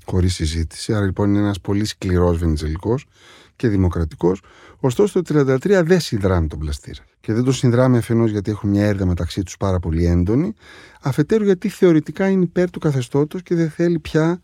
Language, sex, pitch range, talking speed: Greek, male, 95-130 Hz, 180 wpm